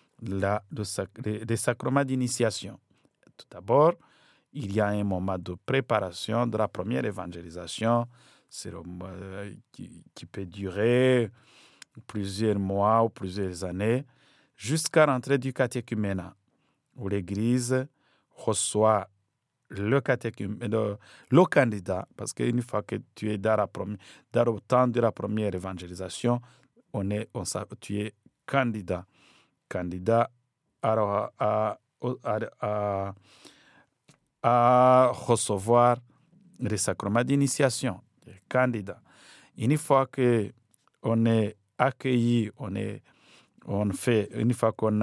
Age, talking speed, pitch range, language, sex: 50-69, 115 wpm, 100-125 Hz, French, male